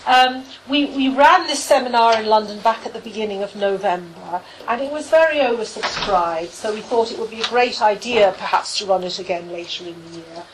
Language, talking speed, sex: English, 210 wpm, female